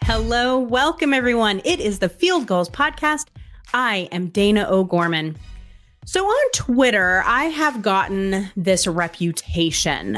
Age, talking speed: 30-49, 125 wpm